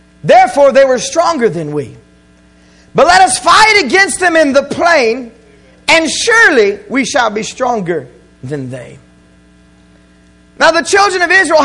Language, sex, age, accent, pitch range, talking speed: English, male, 40-59, American, 230-335 Hz, 145 wpm